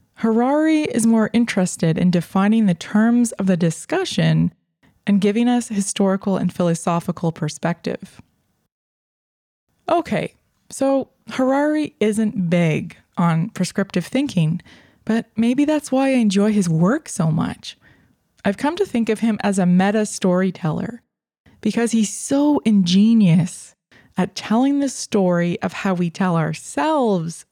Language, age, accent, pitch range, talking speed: English, 20-39, American, 180-225 Hz, 125 wpm